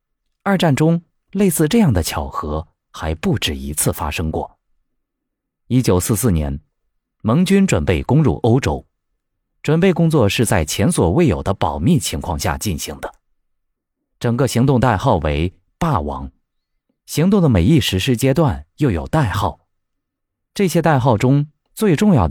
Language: Chinese